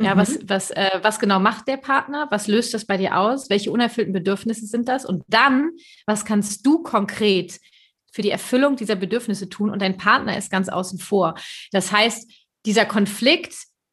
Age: 30-49